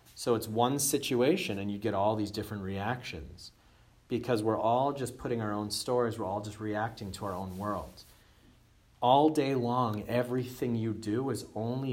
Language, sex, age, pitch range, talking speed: English, male, 40-59, 95-115 Hz, 175 wpm